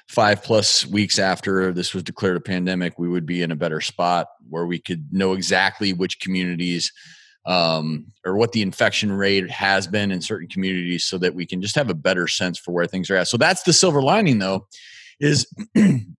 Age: 30-49